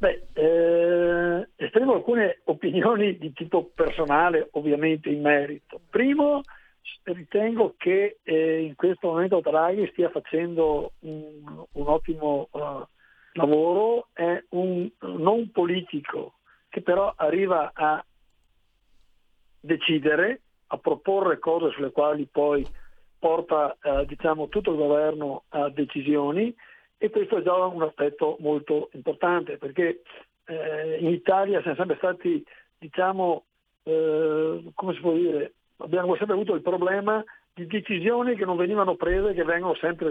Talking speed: 125 wpm